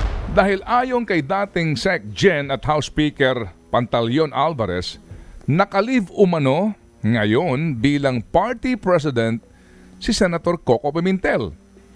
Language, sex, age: Filipino, male, 50-69